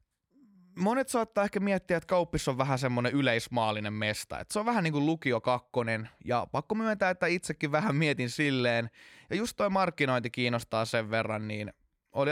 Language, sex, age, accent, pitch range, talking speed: Finnish, male, 20-39, native, 115-155 Hz, 175 wpm